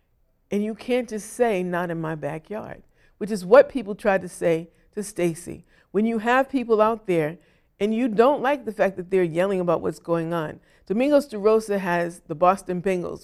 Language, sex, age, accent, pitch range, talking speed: English, female, 50-69, American, 185-235 Hz, 200 wpm